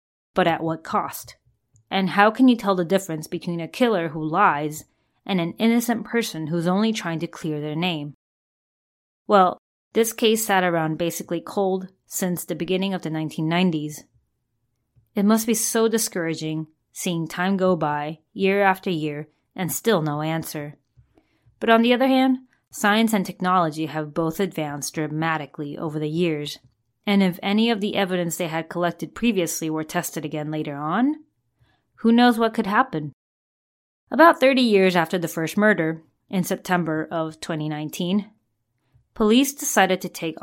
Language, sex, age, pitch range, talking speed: English, female, 20-39, 155-200 Hz, 155 wpm